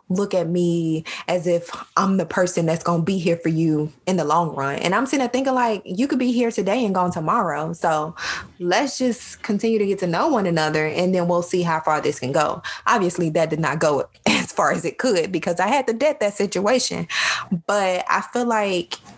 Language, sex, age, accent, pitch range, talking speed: English, female, 20-39, American, 170-220 Hz, 230 wpm